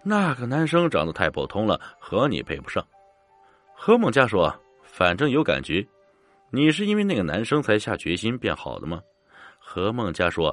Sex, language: male, Chinese